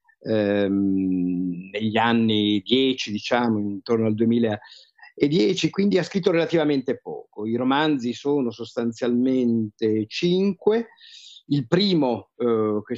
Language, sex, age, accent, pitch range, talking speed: Italian, male, 50-69, native, 110-150 Hz, 100 wpm